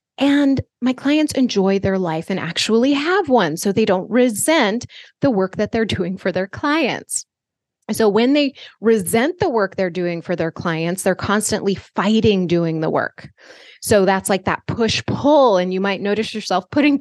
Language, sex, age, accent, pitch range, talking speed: English, female, 20-39, American, 185-235 Hz, 180 wpm